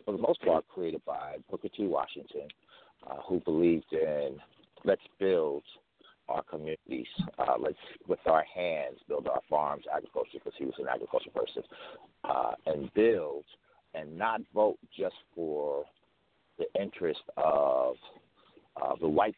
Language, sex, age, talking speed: English, male, 60-79, 140 wpm